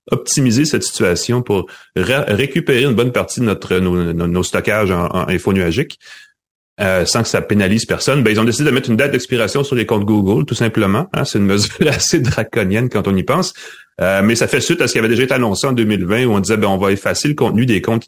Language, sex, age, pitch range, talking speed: French, male, 30-49, 90-115 Hz, 250 wpm